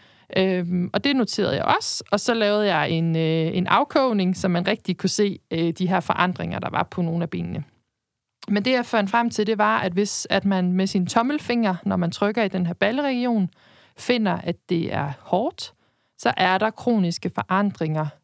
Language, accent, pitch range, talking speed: Danish, native, 180-220 Hz, 190 wpm